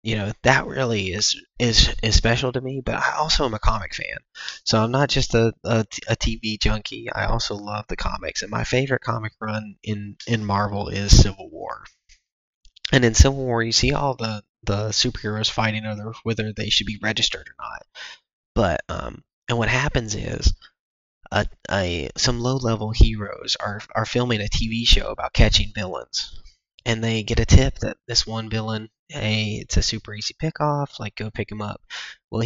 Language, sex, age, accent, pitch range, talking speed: English, male, 20-39, American, 105-115 Hz, 190 wpm